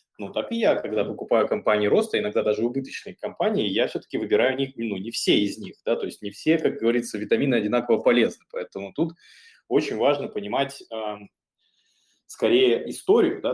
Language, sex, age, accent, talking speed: Russian, male, 20-39, native, 180 wpm